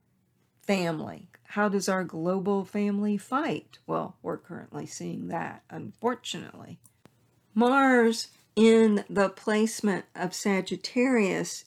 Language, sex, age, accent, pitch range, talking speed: English, female, 50-69, American, 165-210 Hz, 100 wpm